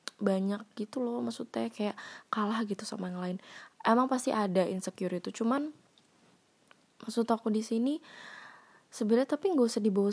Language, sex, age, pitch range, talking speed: Indonesian, female, 20-39, 190-230 Hz, 150 wpm